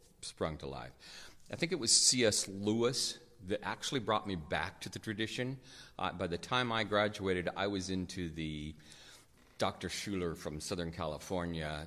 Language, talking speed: English, 160 wpm